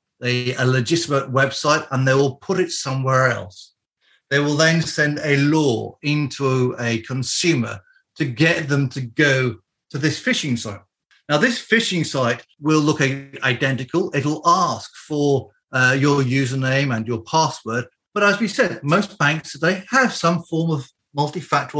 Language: English